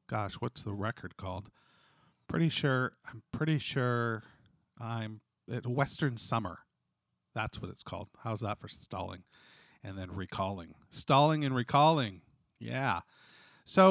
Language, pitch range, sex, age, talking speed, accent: English, 110-145 Hz, male, 40-59, 130 wpm, American